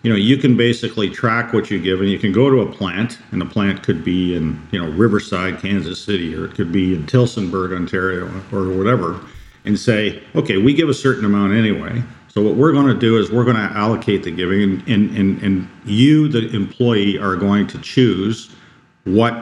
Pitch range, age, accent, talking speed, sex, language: 95-120 Hz, 50-69, American, 210 wpm, male, English